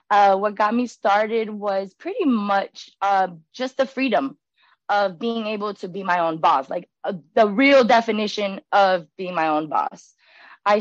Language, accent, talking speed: English, American, 170 wpm